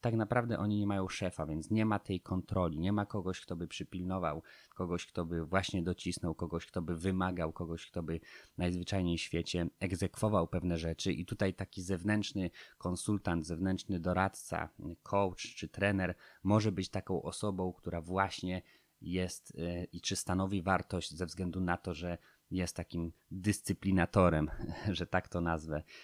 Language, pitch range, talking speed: Polish, 85-100 Hz, 155 wpm